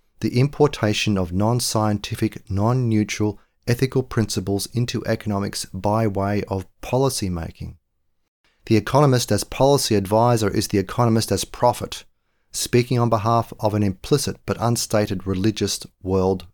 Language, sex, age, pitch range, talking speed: English, male, 40-59, 95-120 Hz, 130 wpm